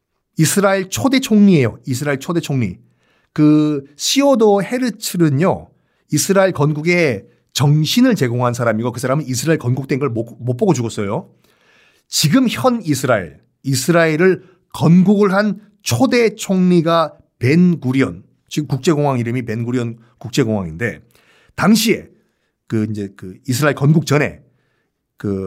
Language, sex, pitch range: Korean, male, 130-190 Hz